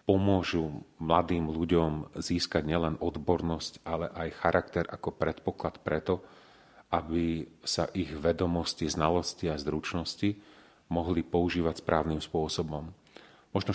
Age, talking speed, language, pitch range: 40-59, 105 wpm, Slovak, 80-90 Hz